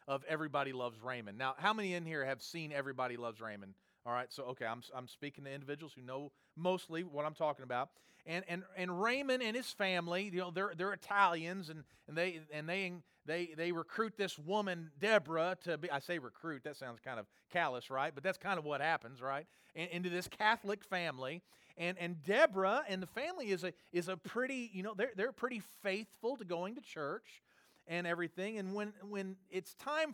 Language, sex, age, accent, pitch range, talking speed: English, male, 40-59, American, 160-205 Hz, 205 wpm